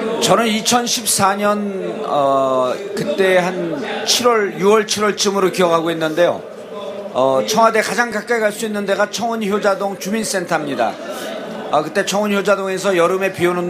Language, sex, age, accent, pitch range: Korean, male, 40-59, native, 180-215 Hz